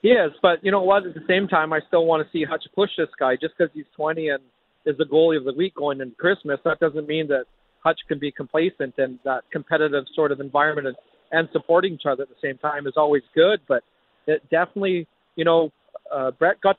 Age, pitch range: 40-59, 135-170 Hz